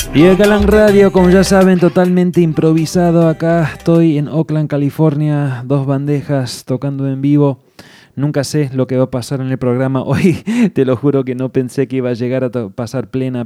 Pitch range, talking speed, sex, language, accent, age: 115-140 Hz, 190 wpm, male, English, Argentinian, 20-39